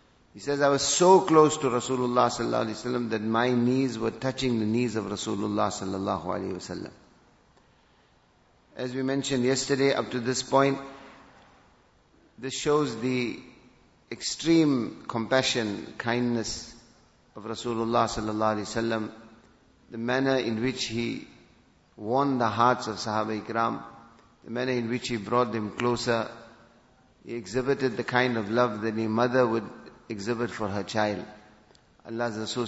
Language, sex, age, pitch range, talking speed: English, male, 50-69, 110-130 Hz, 145 wpm